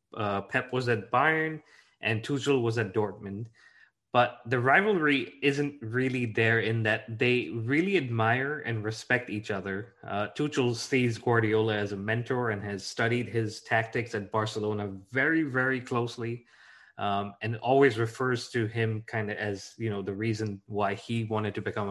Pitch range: 110-125 Hz